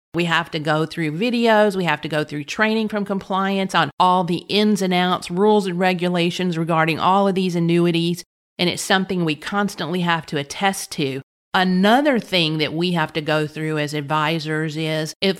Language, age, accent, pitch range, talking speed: English, 40-59, American, 155-190 Hz, 190 wpm